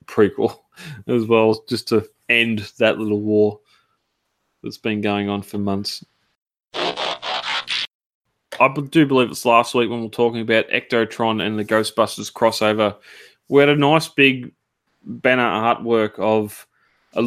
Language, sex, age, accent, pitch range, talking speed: English, male, 20-39, Australian, 105-120 Hz, 140 wpm